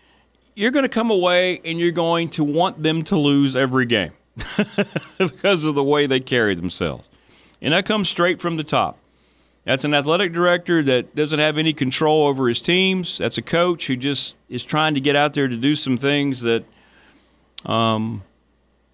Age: 40-59